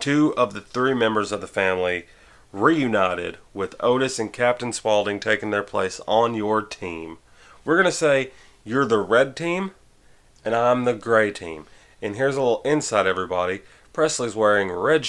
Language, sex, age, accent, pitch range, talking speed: English, male, 30-49, American, 100-130 Hz, 165 wpm